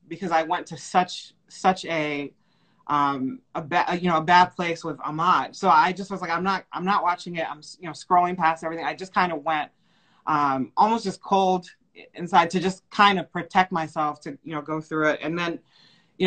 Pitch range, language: 155-185 Hz, English